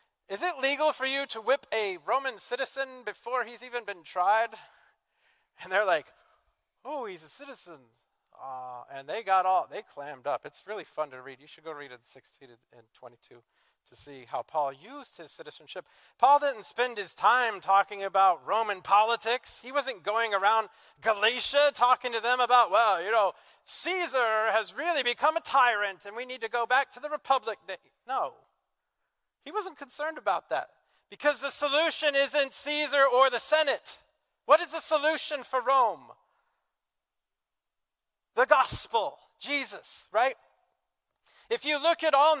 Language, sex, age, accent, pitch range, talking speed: English, male, 40-59, American, 195-280 Hz, 165 wpm